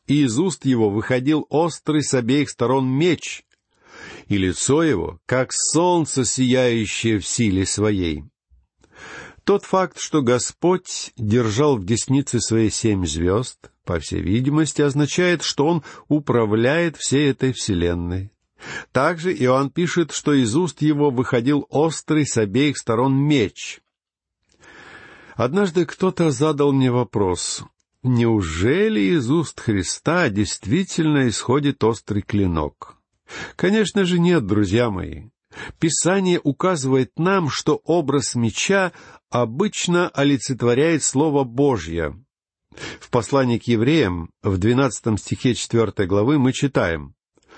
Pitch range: 110-155 Hz